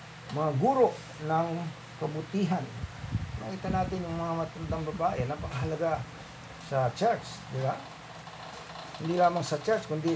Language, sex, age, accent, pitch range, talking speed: English, male, 50-69, Filipino, 130-155 Hz, 110 wpm